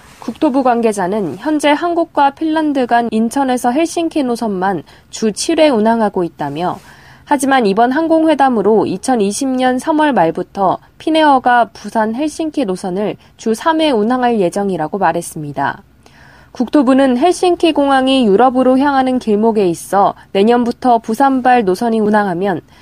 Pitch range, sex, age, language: 210-290 Hz, female, 20-39, Korean